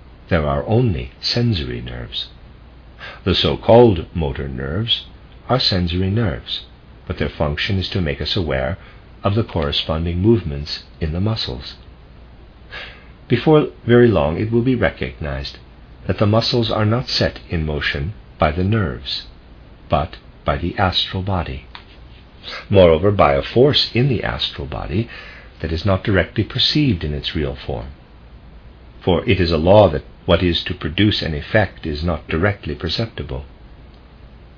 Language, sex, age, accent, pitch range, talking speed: English, male, 50-69, American, 70-105 Hz, 145 wpm